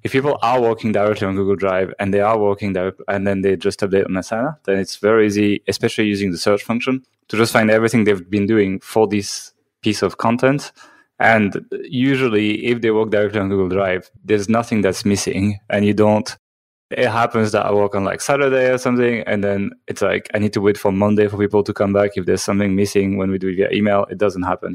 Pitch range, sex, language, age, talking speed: 100-125 Hz, male, English, 20-39, 230 wpm